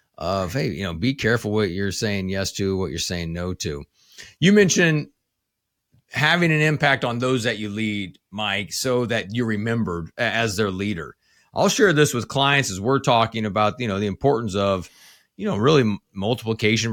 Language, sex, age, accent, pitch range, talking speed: English, male, 30-49, American, 110-150 Hz, 190 wpm